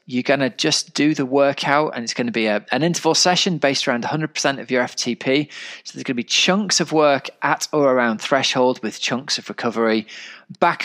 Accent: British